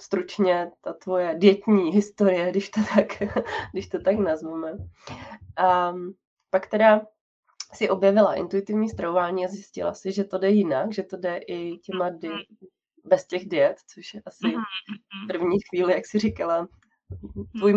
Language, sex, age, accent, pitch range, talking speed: Czech, female, 20-39, native, 170-200 Hz, 150 wpm